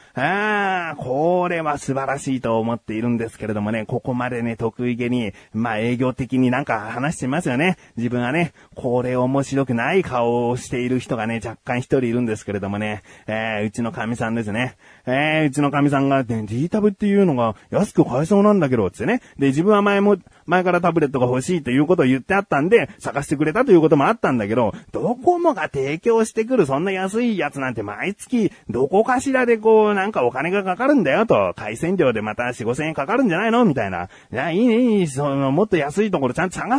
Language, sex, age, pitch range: Japanese, male, 30-49, 120-195 Hz